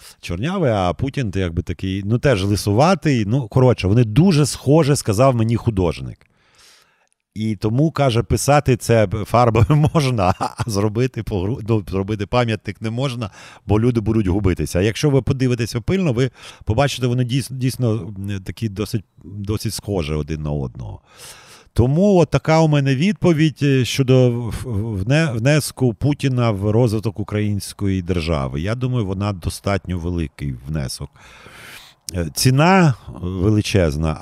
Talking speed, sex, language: 130 wpm, male, Ukrainian